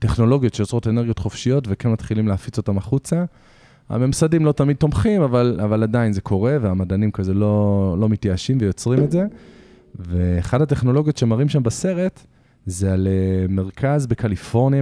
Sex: male